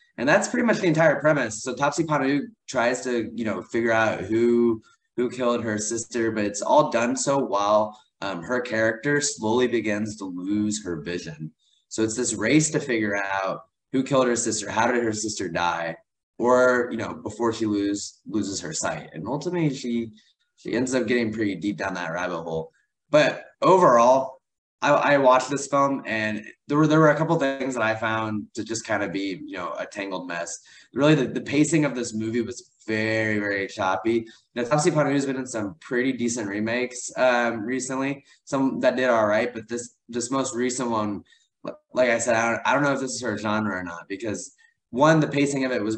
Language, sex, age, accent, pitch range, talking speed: English, male, 20-39, American, 105-140 Hz, 205 wpm